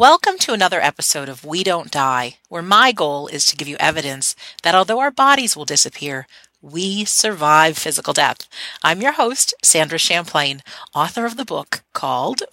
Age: 50-69